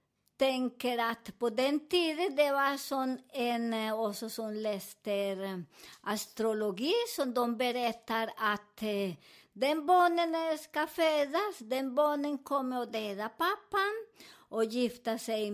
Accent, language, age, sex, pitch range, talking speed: American, Swedish, 50-69, male, 215-295 Hz, 115 wpm